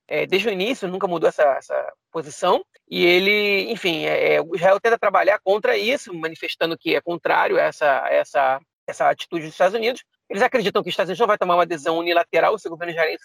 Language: Portuguese